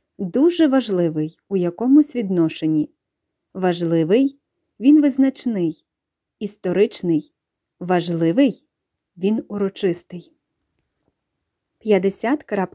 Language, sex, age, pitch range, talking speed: English, female, 20-39, 190-250 Hz, 70 wpm